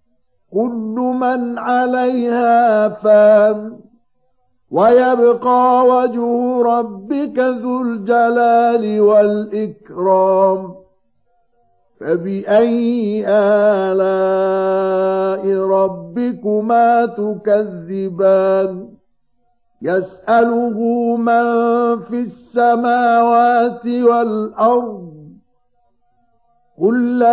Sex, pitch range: male, 195-240 Hz